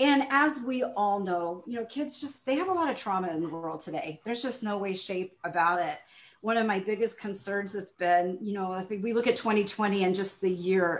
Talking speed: 245 wpm